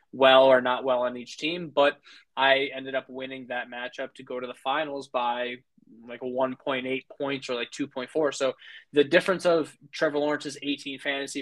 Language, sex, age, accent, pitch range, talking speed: English, male, 20-39, American, 130-150 Hz, 185 wpm